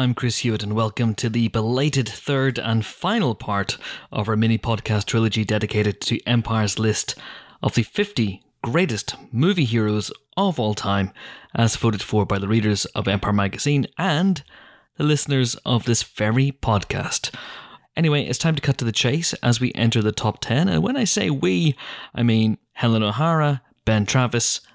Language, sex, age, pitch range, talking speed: English, male, 30-49, 110-145 Hz, 170 wpm